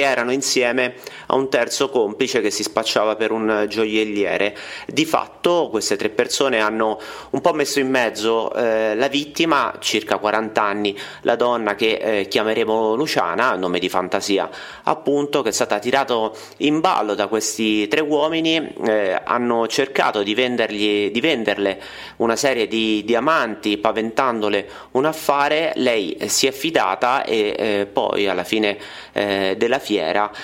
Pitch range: 105-130 Hz